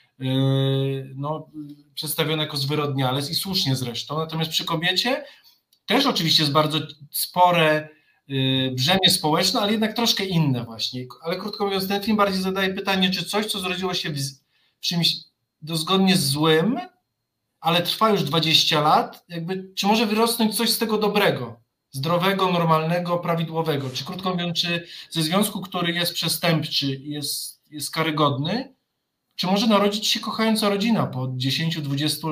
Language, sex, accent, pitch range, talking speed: Polish, male, native, 155-205 Hz, 140 wpm